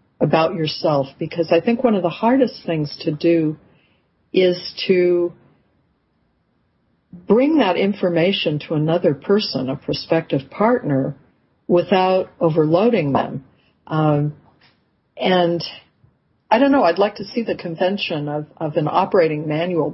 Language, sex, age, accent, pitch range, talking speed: English, female, 50-69, American, 150-185 Hz, 125 wpm